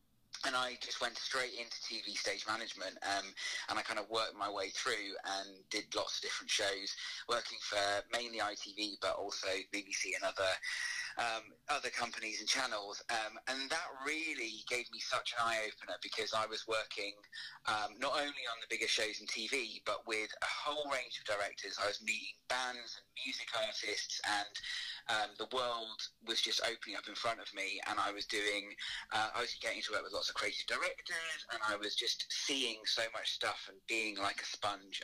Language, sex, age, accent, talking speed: English, male, 30-49, British, 195 wpm